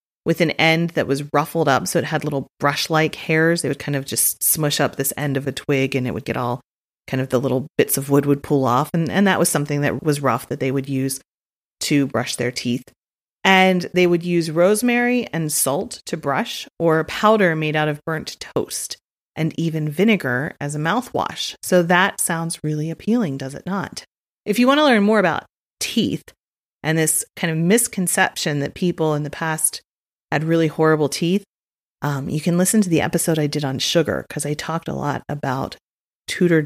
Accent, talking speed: American, 205 wpm